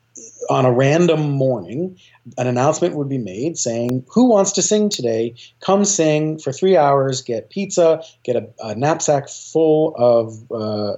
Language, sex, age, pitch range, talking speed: English, male, 40-59, 120-150 Hz, 160 wpm